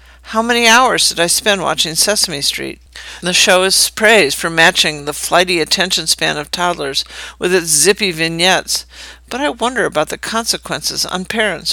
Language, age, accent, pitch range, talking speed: English, 60-79, American, 145-205 Hz, 170 wpm